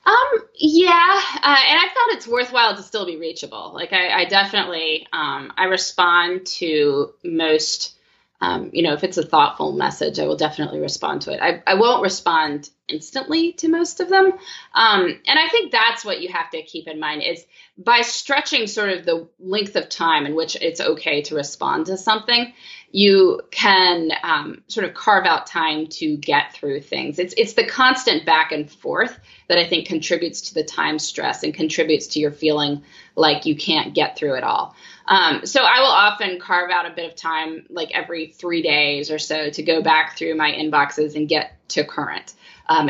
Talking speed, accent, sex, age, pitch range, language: 195 wpm, American, female, 20-39, 155-255 Hz, English